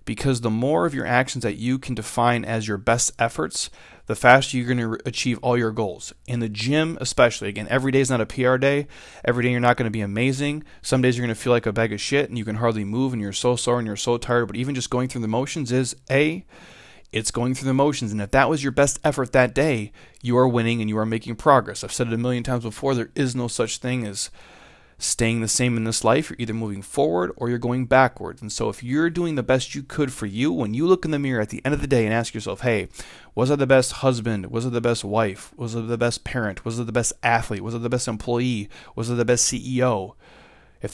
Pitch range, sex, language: 110-130 Hz, male, English